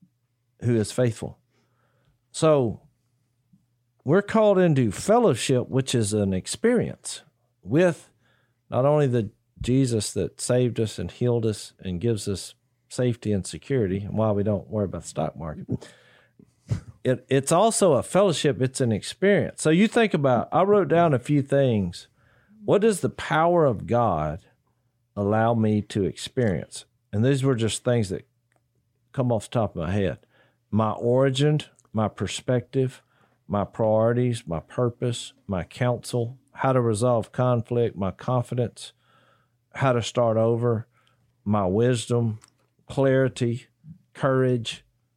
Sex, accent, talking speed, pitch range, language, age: male, American, 135 wpm, 115-140 Hz, English, 50-69